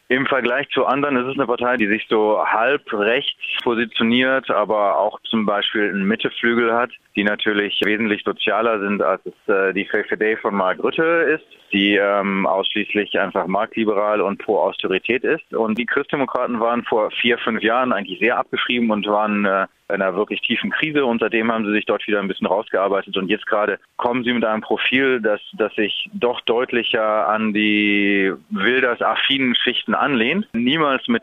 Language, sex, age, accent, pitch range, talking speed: German, male, 30-49, German, 105-120 Hz, 170 wpm